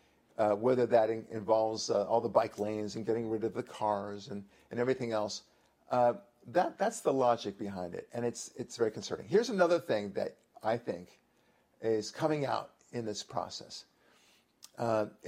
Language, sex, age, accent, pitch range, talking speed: English, male, 50-69, American, 105-130 Hz, 175 wpm